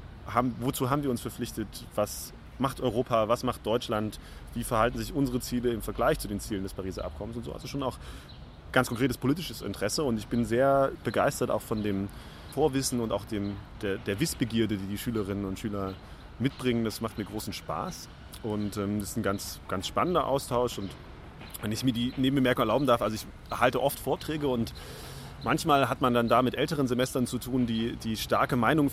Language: German